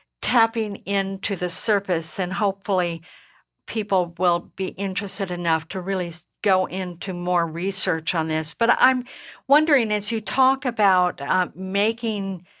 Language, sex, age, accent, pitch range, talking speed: English, female, 60-79, American, 180-205 Hz, 135 wpm